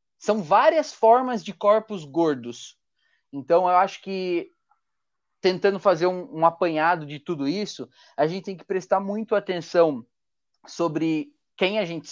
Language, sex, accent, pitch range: Portuguese, male, Brazilian, 155-205 Hz